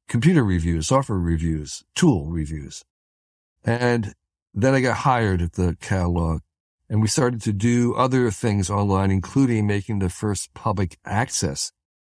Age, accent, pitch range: 60-79, American, 90-125 Hz